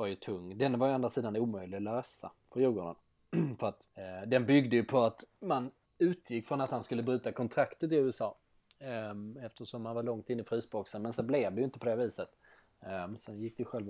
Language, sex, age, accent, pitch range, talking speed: Swedish, male, 20-39, native, 105-125 Hz, 230 wpm